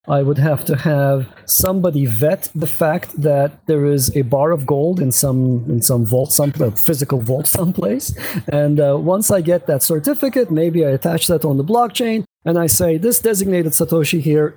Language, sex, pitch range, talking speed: English, male, 140-175 Hz, 190 wpm